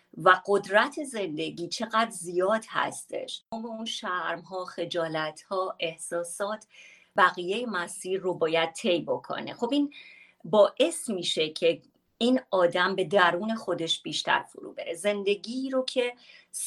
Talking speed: 115 wpm